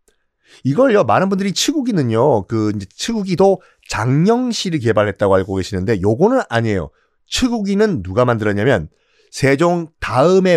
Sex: male